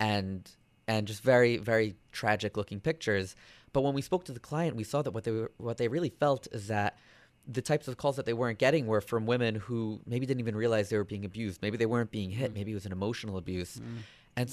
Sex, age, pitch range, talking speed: male, 20-39, 100-125 Hz, 245 wpm